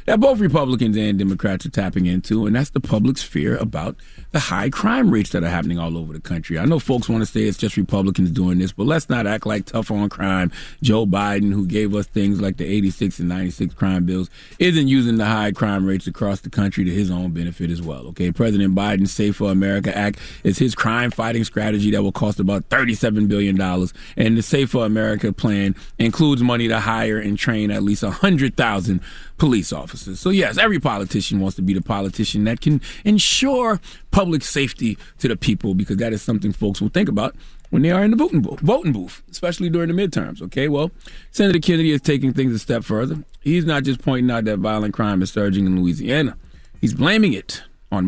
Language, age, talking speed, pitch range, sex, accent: English, 30-49, 215 wpm, 95-130 Hz, male, American